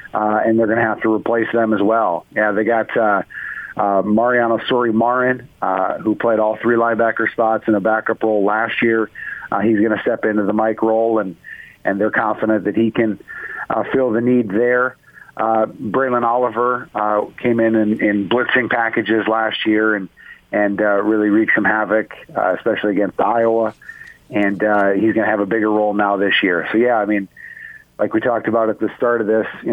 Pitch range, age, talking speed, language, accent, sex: 105-115 Hz, 50-69, 205 wpm, English, American, male